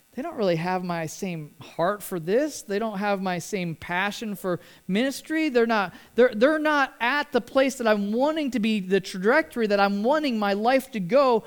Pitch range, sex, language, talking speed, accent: 190-250 Hz, male, English, 205 wpm, American